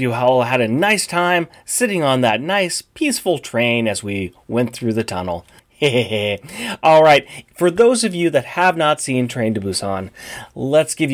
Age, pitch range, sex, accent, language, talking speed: 30-49, 120-190 Hz, male, American, English, 180 wpm